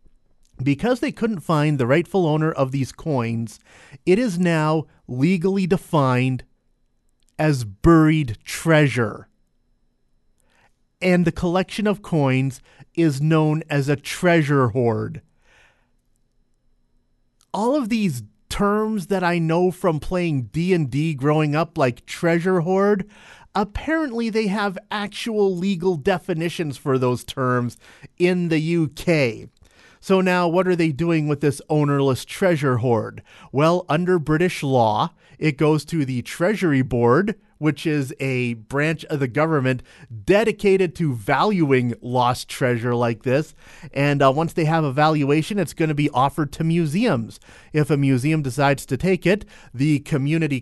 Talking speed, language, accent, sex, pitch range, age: 135 wpm, English, American, male, 135-180 Hz, 30-49